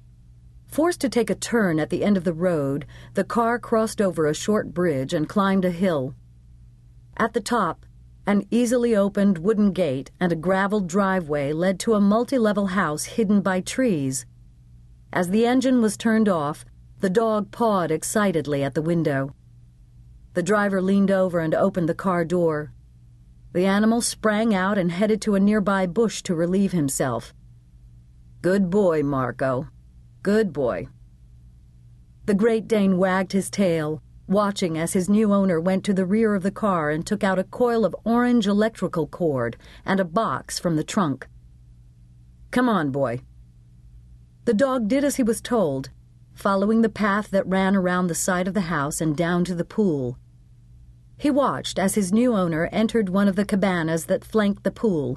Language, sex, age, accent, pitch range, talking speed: English, female, 50-69, American, 130-210 Hz, 170 wpm